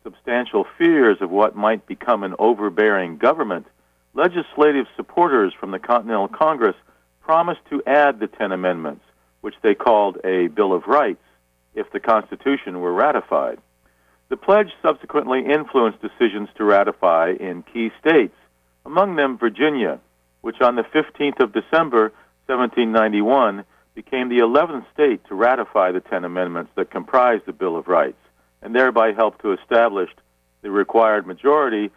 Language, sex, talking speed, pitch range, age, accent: English, male, 145 wpm, 90-145 Hz, 50-69, American